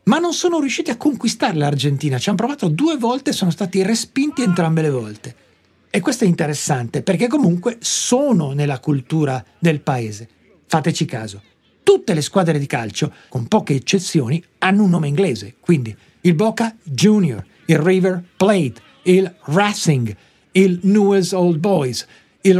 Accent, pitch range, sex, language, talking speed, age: native, 145-205 Hz, male, Italian, 155 wpm, 50-69